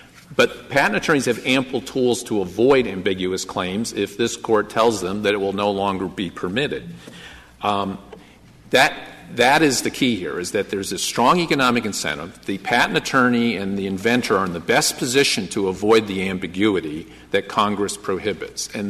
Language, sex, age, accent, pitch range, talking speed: English, male, 50-69, American, 95-120 Hz, 175 wpm